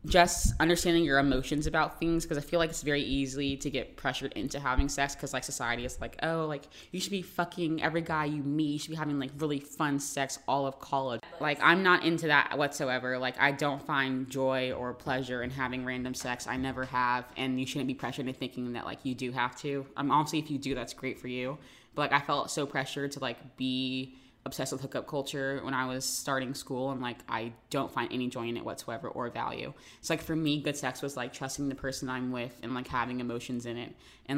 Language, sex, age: English, female, 20-39